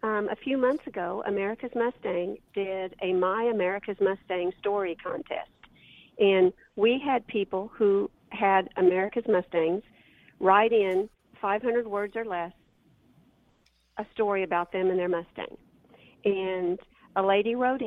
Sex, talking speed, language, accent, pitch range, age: female, 130 wpm, English, American, 190-220 Hz, 50-69